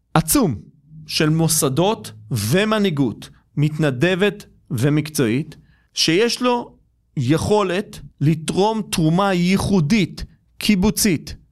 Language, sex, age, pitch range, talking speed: Hebrew, male, 40-59, 140-190 Hz, 70 wpm